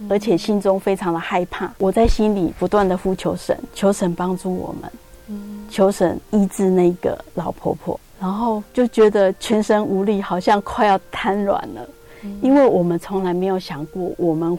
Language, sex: Chinese, female